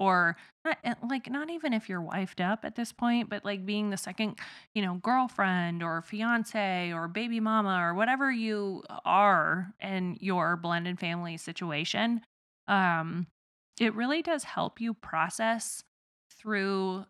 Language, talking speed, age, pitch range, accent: English, 145 wpm, 20-39, 180-220 Hz, American